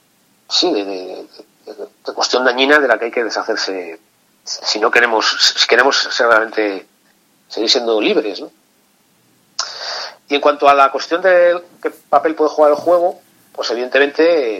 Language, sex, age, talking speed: Spanish, male, 40-59, 165 wpm